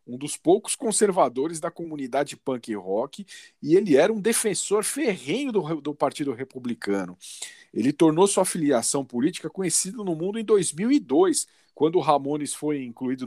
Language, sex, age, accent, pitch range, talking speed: Portuguese, male, 40-59, Brazilian, 110-160 Hz, 150 wpm